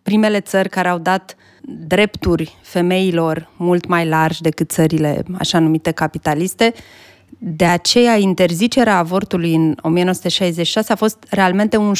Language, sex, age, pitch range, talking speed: Romanian, female, 20-39, 165-205 Hz, 125 wpm